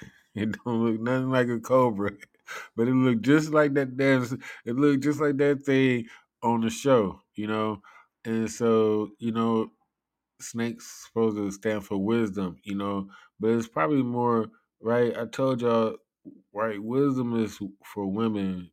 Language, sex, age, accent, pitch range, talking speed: English, male, 20-39, American, 100-120 Hz, 160 wpm